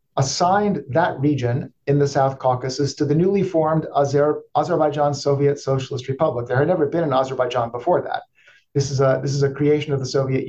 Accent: American